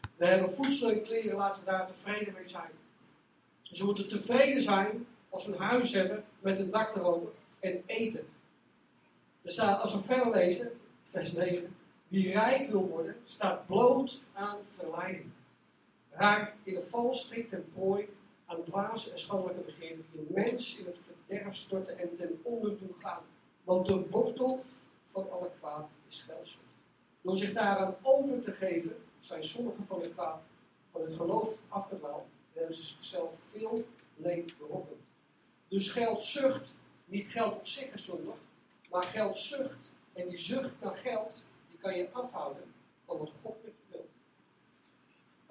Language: Dutch